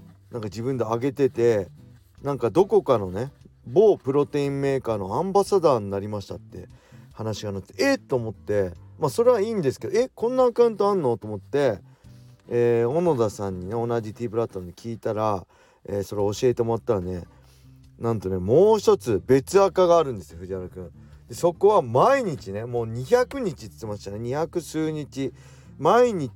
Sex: male